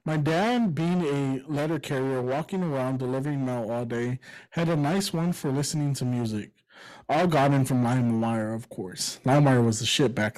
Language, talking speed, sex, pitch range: English, 195 wpm, male, 130-165 Hz